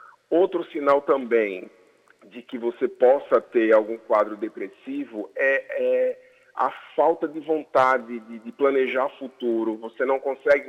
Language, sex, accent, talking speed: Portuguese, male, Brazilian, 135 wpm